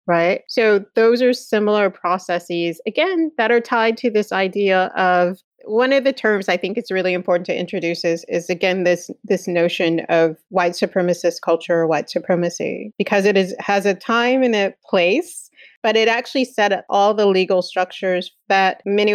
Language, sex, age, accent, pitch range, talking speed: English, female, 30-49, American, 175-215 Hz, 185 wpm